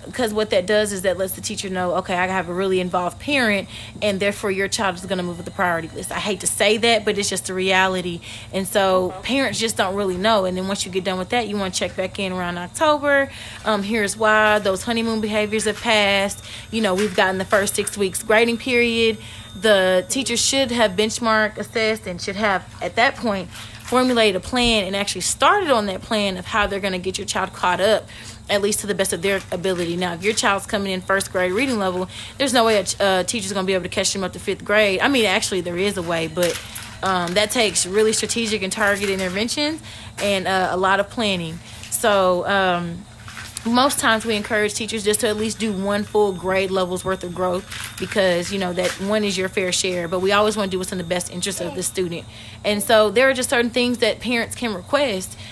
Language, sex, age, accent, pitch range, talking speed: English, female, 30-49, American, 185-220 Hz, 240 wpm